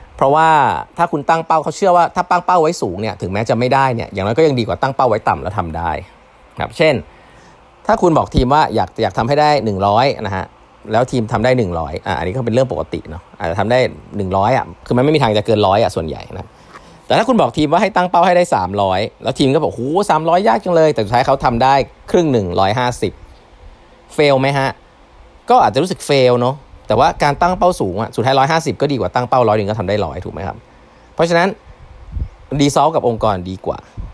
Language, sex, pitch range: Thai, male, 105-155 Hz